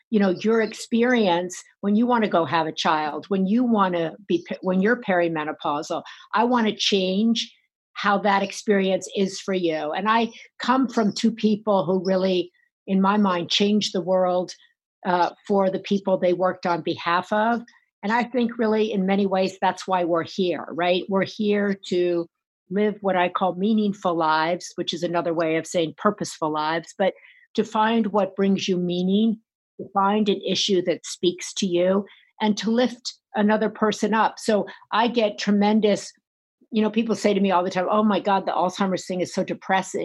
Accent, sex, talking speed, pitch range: American, female, 185 wpm, 175-210 Hz